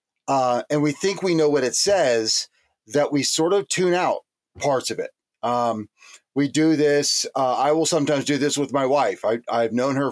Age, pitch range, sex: 40-59, 135-160 Hz, male